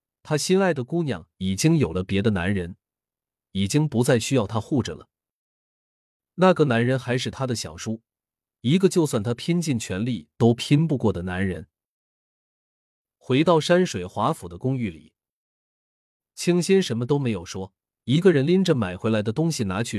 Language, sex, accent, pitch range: Chinese, male, native, 100-150 Hz